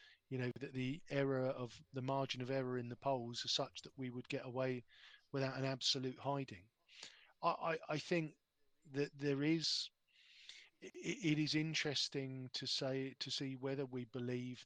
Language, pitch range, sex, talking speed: English, 130-155 Hz, male, 170 wpm